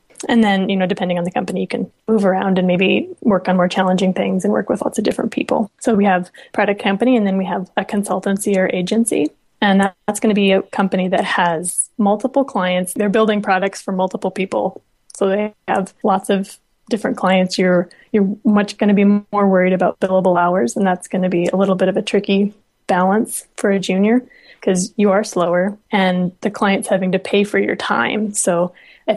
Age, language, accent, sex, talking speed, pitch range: 20-39, English, American, female, 215 wpm, 185-210 Hz